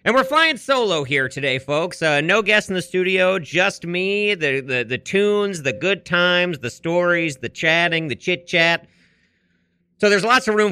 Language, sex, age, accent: English, male, 40-59, American